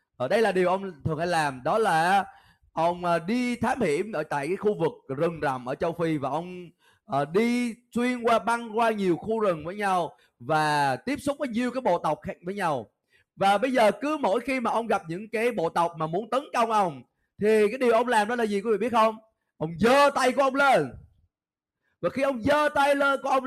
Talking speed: 235 wpm